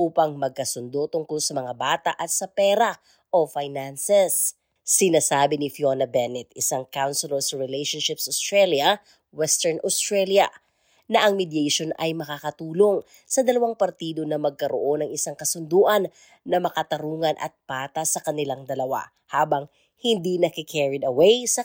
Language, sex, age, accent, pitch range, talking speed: Filipino, female, 20-39, native, 145-190 Hz, 130 wpm